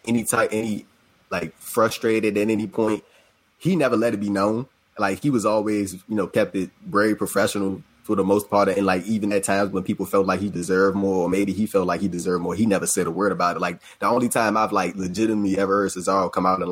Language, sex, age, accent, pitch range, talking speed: English, male, 20-39, American, 90-105 Hz, 245 wpm